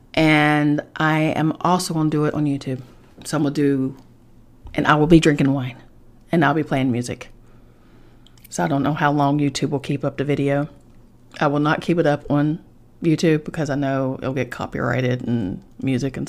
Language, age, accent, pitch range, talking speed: English, 30-49, American, 140-180 Hz, 205 wpm